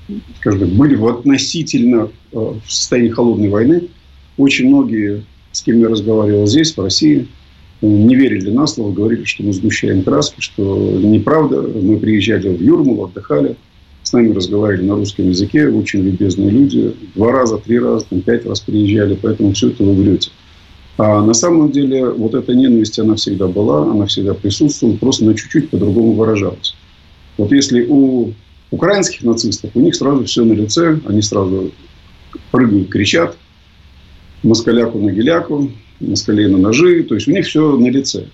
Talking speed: 160 wpm